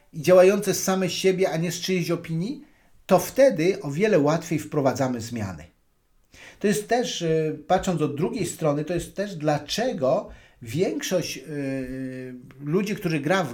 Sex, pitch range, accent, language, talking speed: male, 140-185 Hz, native, Polish, 145 wpm